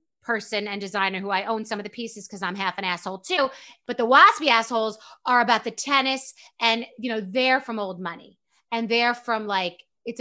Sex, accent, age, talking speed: female, American, 30-49, 210 wpm